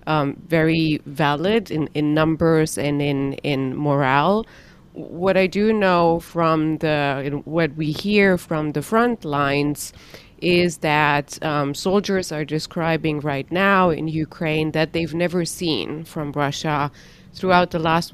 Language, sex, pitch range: English, female, 145-175 Hz